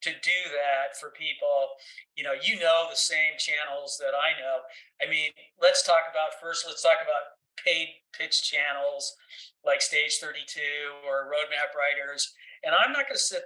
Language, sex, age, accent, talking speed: English, male, 50-69, American, 180 wpm